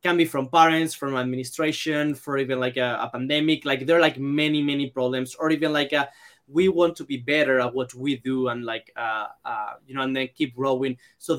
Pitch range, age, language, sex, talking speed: 130-155 Hz, 20-39, English, male, 225 wpm